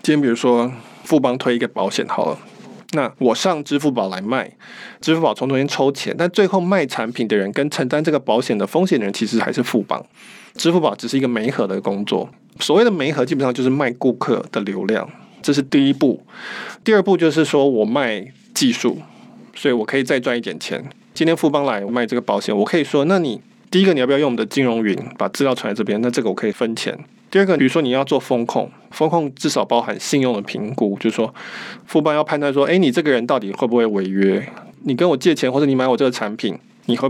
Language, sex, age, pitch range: Chinese, male, 20-39, 120-165 Hz